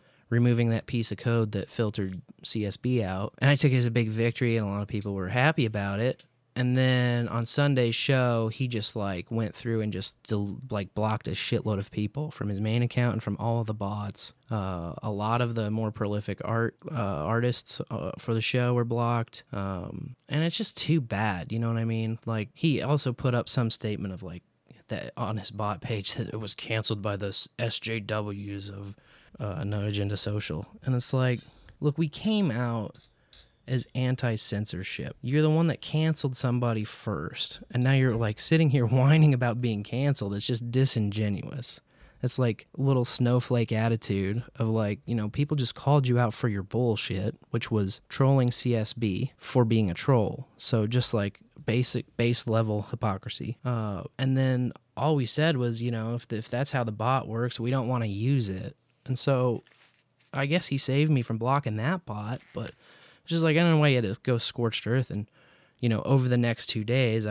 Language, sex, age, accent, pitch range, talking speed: English, male, 20-39, American, 110-130 Hz, 200 wpm